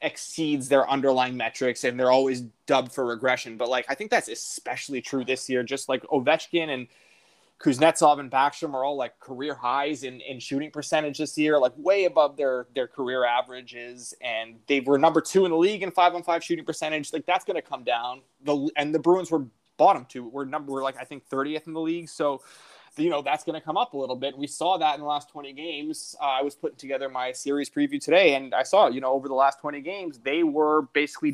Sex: male